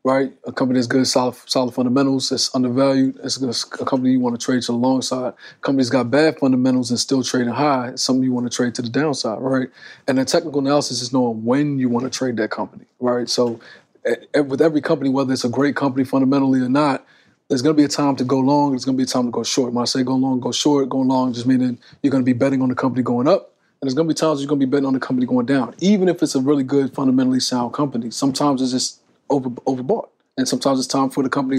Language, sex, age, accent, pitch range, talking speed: English, male, 20-39, American, 125-140 Hz, 270 wpm